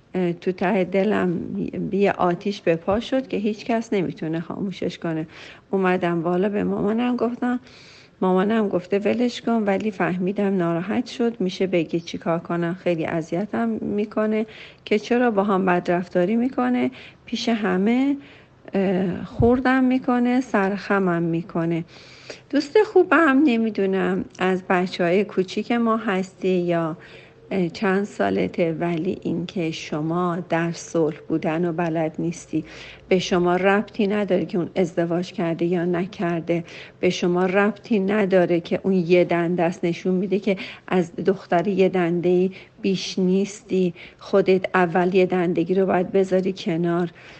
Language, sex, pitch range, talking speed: Persian, female, 175-205 Hz, 125 wpm